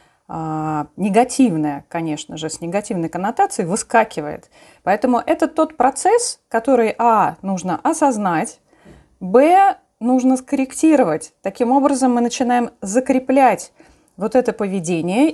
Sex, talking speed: female, 100 wpm